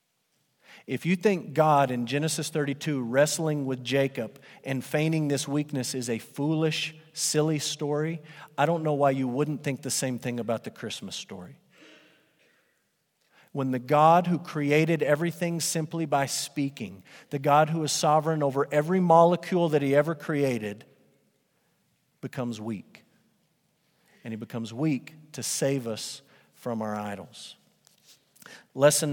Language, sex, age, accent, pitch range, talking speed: English, male, 40-59, American, 135-165 Hz, 140 wpm